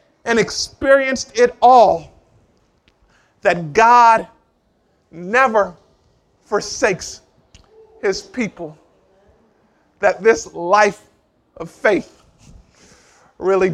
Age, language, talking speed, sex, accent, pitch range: 50-69, English, 70 wpm, male, American, 180-235 Hz